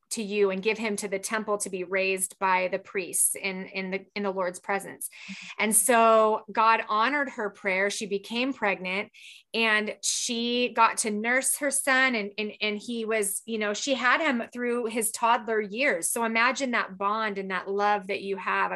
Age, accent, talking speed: 30-49, American, 195 wpm